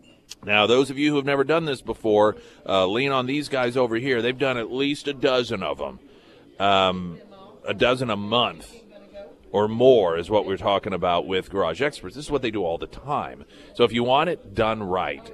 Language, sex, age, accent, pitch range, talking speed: English, male, 30-49, American, 95-130 Hz, 215 wpm